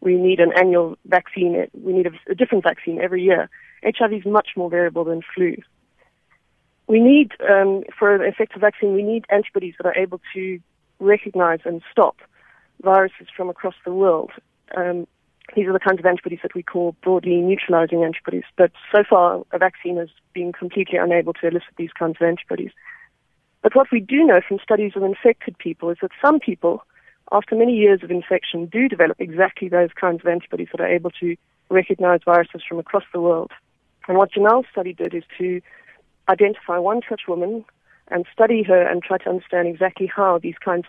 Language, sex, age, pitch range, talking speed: English, female, 30-49, 175-210 Hz, 190 wpm